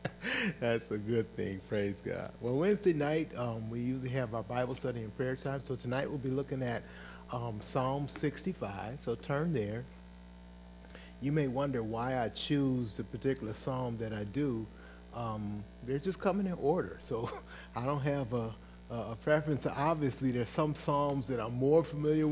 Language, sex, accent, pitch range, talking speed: English, male, American, 105-150 Hz, 175 wpm